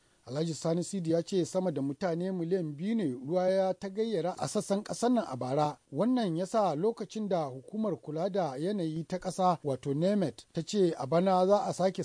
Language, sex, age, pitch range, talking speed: English, male, 40-59, 160-210 Hz, 145 wpm